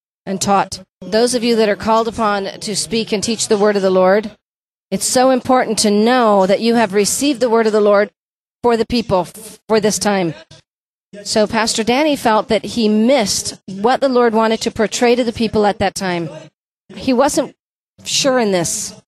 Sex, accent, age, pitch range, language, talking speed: female, American, 40-59, 195-245 Hz, English, 195 wpm